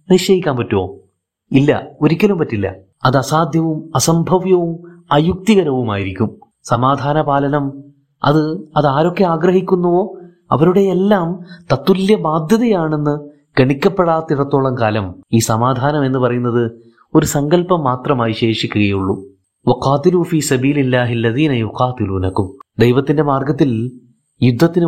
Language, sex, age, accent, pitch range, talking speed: Malayalam, male, 30-49, native, 125-175 Hz, 75 wpm